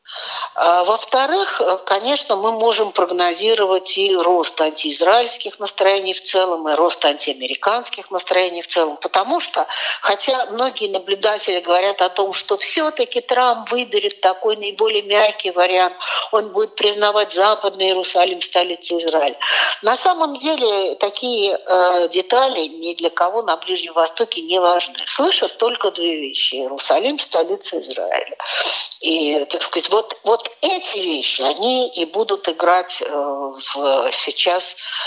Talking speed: 125 wpm